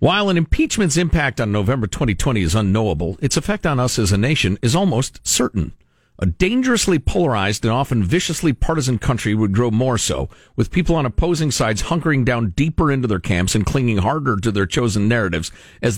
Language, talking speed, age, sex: English, 190 wpm, 50-69, male